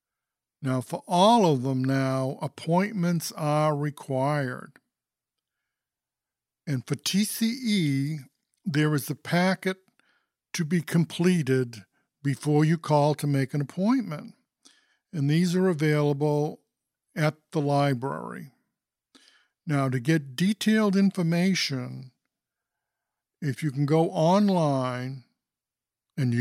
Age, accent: 60-79, American